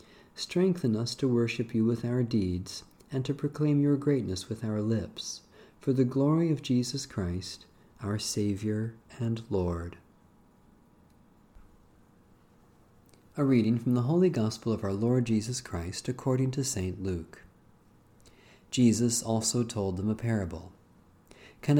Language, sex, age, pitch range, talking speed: English, male, 40-59, 100-125 Hz, 130 wpm